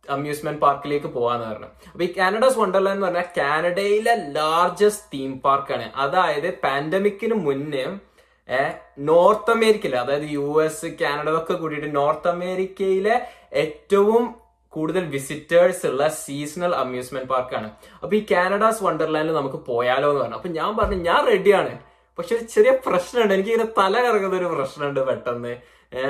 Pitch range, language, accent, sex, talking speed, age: 140-205 Hz, Malayalam, native, male, 135 wpm, 20-39